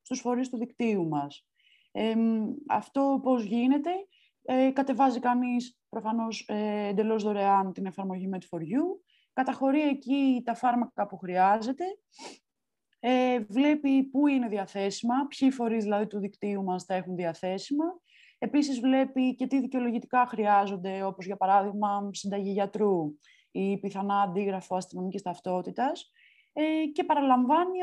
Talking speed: 125 wpm